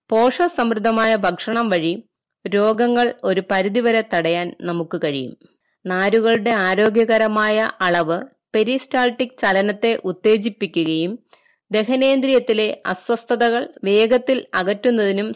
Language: Malayalam